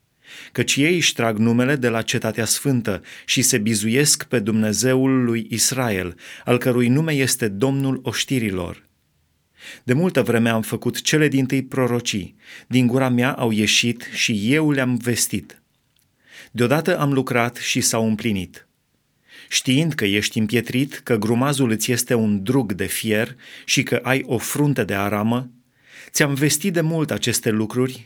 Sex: male